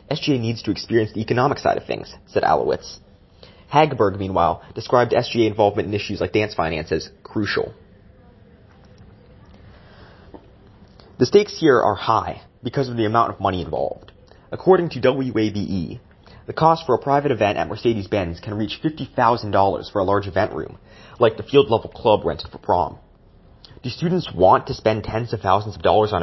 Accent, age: American, 30-49